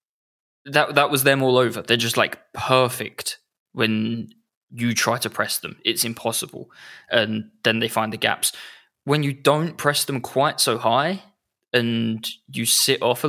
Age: 20-39